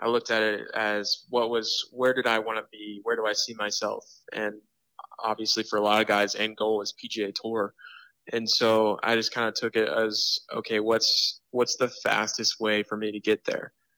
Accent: American